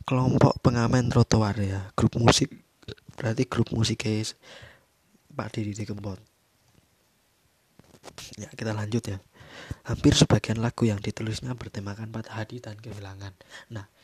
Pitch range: 110-125 Hz